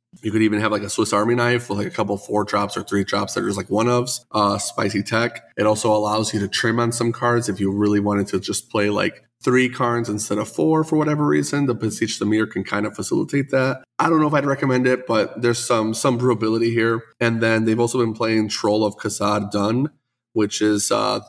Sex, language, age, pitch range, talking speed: male, English, 20-39, 105-125 Hz, 245 wpm